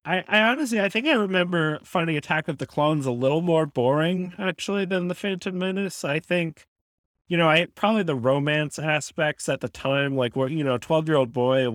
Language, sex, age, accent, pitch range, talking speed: English, male, 30-49, American, 125-160 Hz, 205 wpm